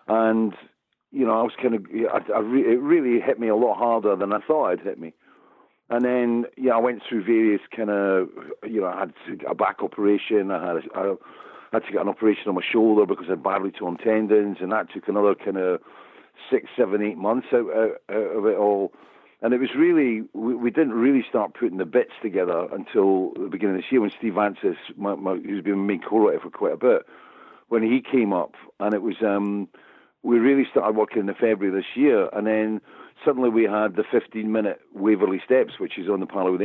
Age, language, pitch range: 50-69, English, 100-120 Hz